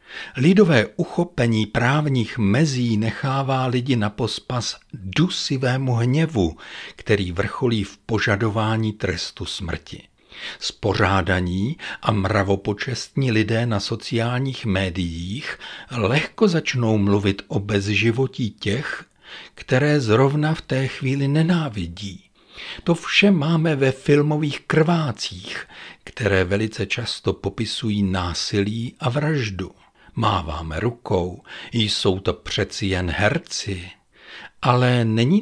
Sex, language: male, Czech